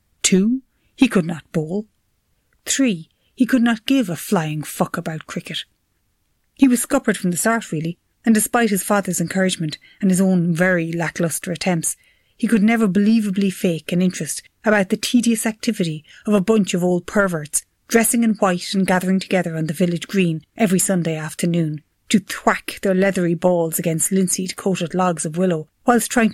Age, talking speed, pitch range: 30-49, 170 wpm, 170-215 Hz